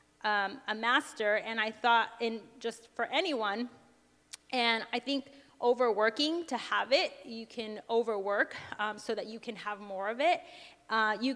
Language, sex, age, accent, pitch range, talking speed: English, female, 30-49, American, 225-275 Hz, 165 wpm